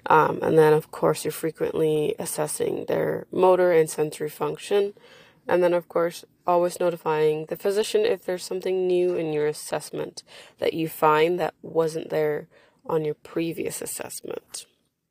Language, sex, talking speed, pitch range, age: English, female, 150 wpm, 160-195 Hz, 20-39